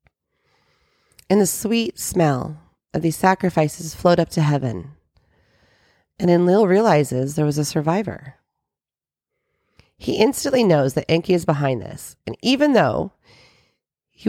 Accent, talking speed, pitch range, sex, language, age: American, 130 wpm, 150-190 Hz, female, English, 40-59